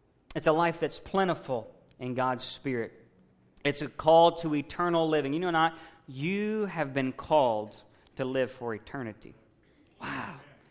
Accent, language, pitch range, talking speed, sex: American, English, 140-175 Hz, 145 wpm, male